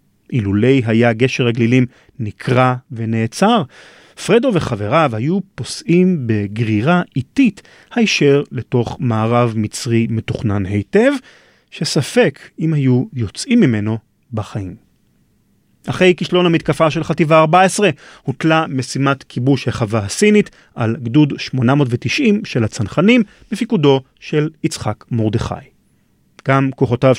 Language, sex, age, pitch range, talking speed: Hebrew, male, 40-59, 115-150 Hz, 100 wpm